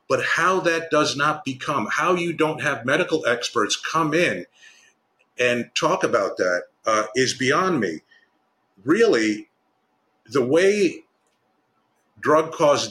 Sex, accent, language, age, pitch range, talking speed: male, American, English, 50-69, 125-165 Hz, 120 wpm